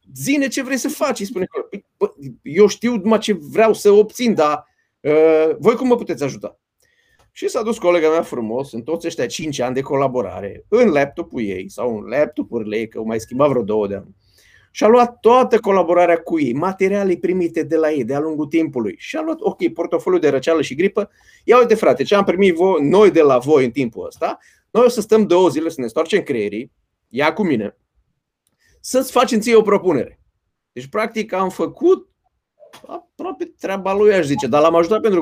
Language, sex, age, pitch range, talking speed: Romanian, male, 30-49, 160-235 Hz, 195 wpm